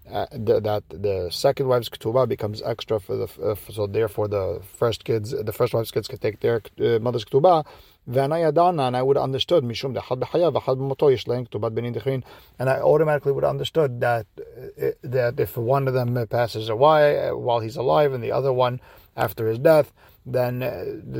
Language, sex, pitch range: English, male, 110-130 Hz